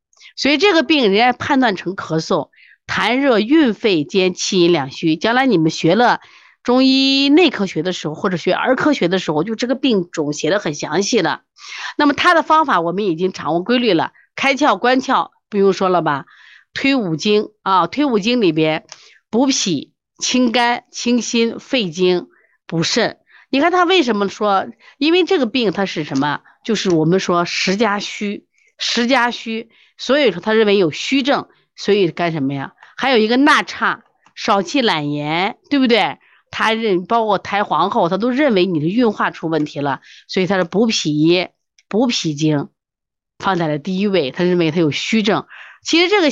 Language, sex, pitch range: Chinese, female, 170-260 Hz